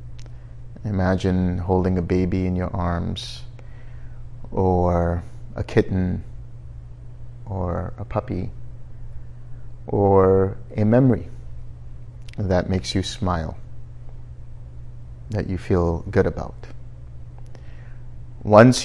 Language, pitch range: English, 95-120 Hz